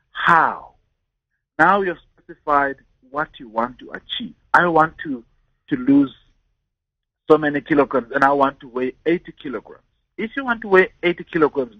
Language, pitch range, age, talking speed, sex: English, 120-170 Hz, 50-69, 160 wpm, male